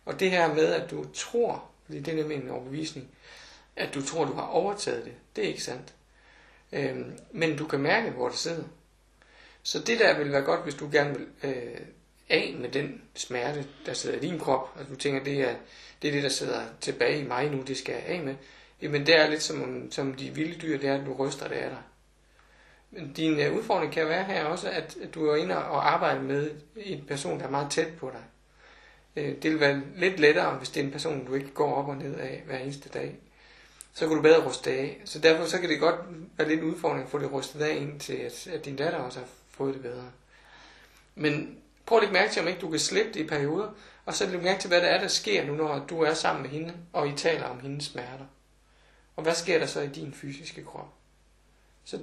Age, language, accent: 60-79, Danish, native